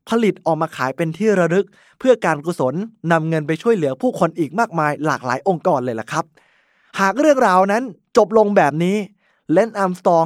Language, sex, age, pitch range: Thai, male, 20-39, 155-210 Hz